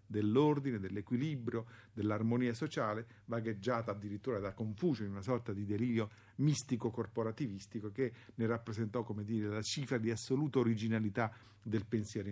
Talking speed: 125 wpm